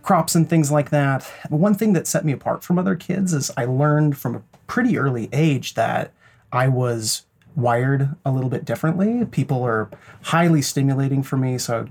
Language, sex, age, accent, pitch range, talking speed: English, male, 30-49, American, 135-170 Hz, 195 wpm